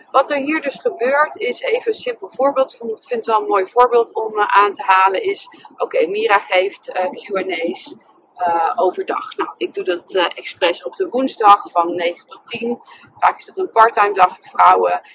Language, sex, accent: Dutch, female, Dutch